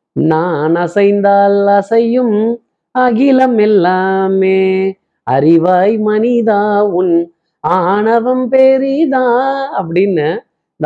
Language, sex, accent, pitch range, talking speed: Tamil, male, native, 145-200 Hz, 55 wpm